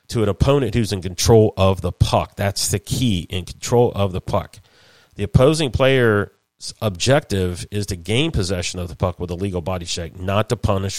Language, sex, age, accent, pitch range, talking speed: English, male, 40-59, American, 90-115 Hz, 195 wpm